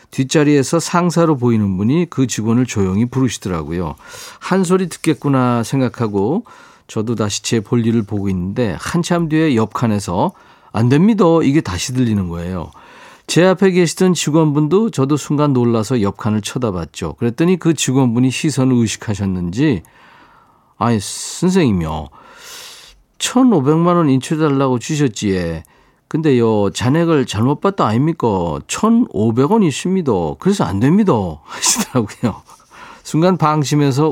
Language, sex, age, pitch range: Korean, male, 50-69, 115-165 Hz